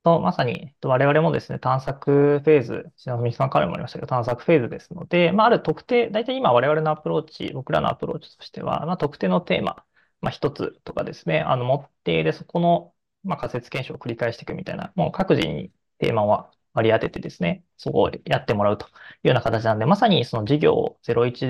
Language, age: Japanese, 20-39